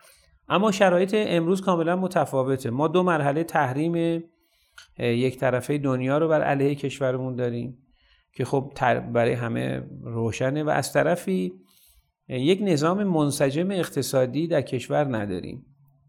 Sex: male